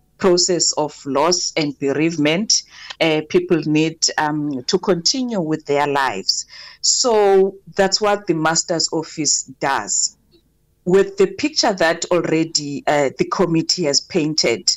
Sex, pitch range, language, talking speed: female, 150-180 Hz, English, 125 wpm